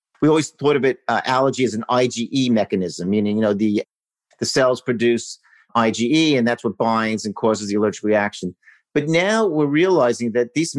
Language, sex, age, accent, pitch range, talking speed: English, male, 50-69, American, 115-145 Hz, 190 wpm